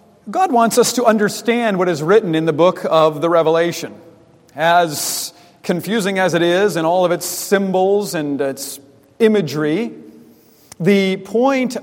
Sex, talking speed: male, 145 wpm